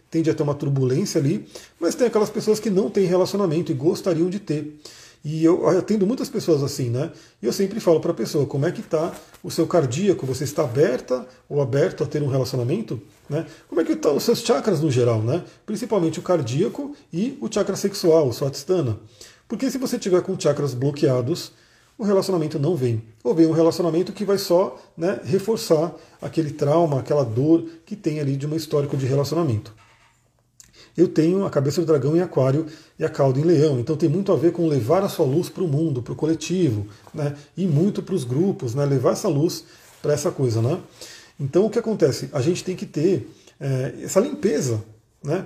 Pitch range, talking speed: 145-185 Hz, 200 wpm